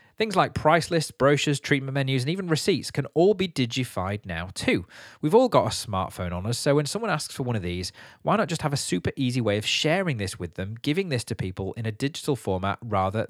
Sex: male